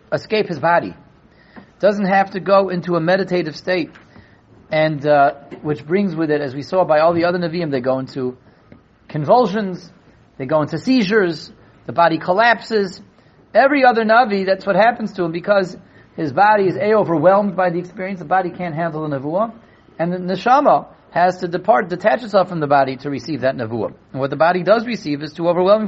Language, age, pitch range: English, 40-59, 155-205 Hz